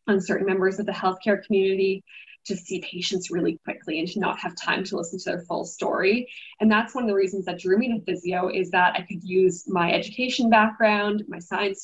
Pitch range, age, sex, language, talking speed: 185-215 Hz, 10-29, female, English, 225 wpm